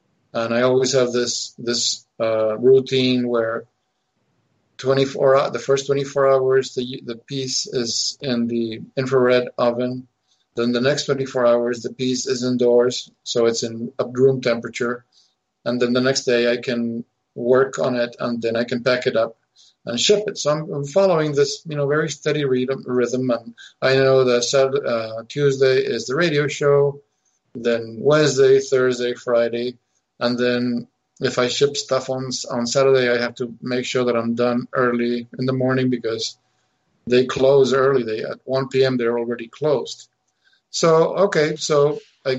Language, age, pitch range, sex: English, 50-69, 120-135 Hz, male